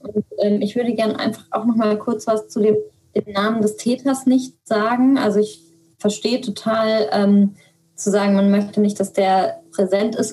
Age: 20-39